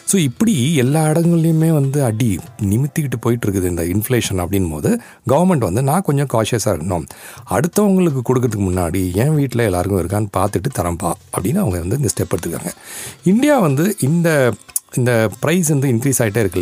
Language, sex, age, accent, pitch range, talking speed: Tamil, male, 40-59, native, 105-155 Hz, 150 wpm